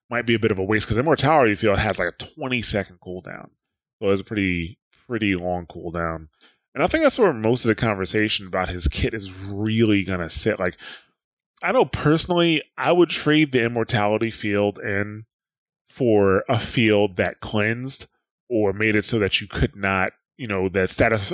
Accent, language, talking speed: American, English, 190 wpm